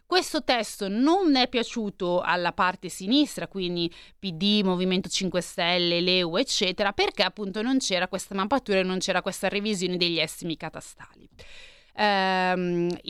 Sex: female